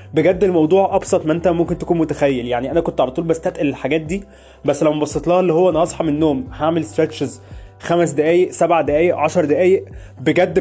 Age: 20-39